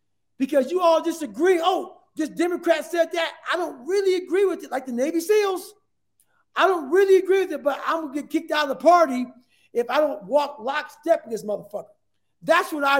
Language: English